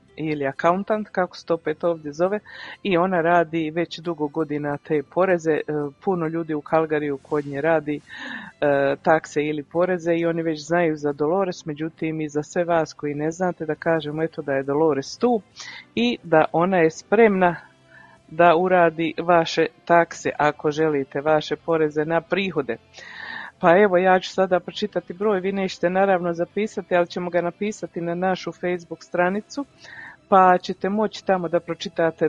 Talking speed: 160 wpm